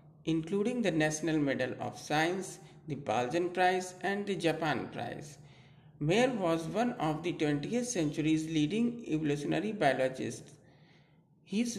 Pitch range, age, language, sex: 145-180 Hz, 50-69, Hindi, male